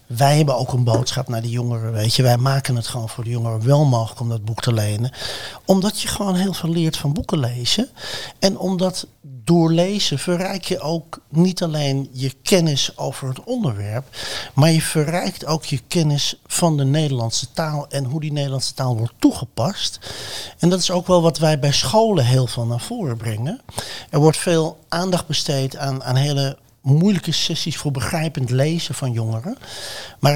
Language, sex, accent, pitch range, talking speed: Dutch, male, Dutch, 130-170 Hz, 185 wpm